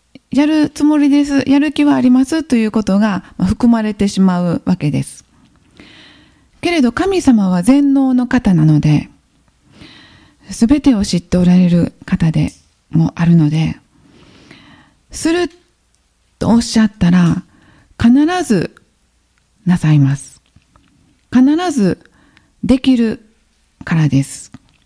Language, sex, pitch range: Japanese, female, 175-270 Hz